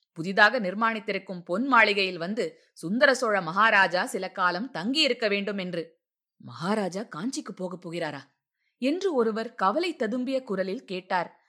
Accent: native